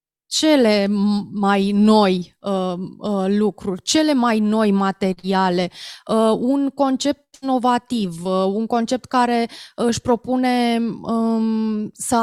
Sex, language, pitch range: female, Romanian, 205-255 Hz